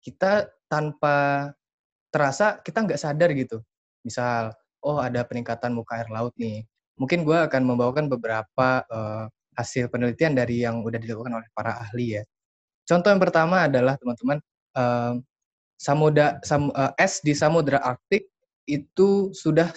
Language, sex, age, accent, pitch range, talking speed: Indonesian, male, 20-39, native, 125-165 Hz, 140 wpm